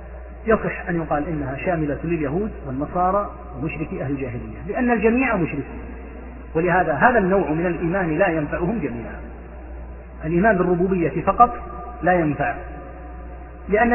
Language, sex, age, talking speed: Arabic, male, 40-59, 115 wpm